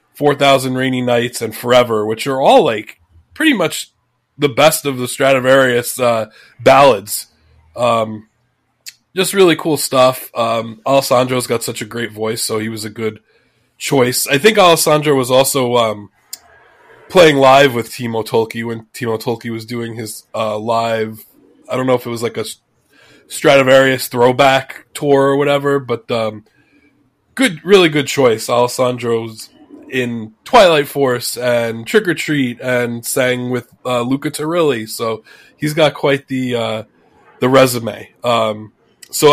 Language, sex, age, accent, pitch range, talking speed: English, male, 20-39, American, 115-140 Hz, 150 wpm